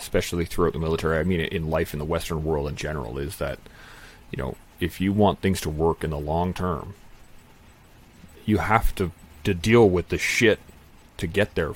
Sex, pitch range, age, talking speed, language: male, 85-105 Hz, 30-49, 200 wpm, English